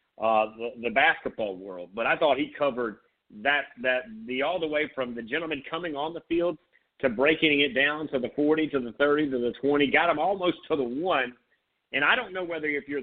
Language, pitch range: English, 125-160 Hz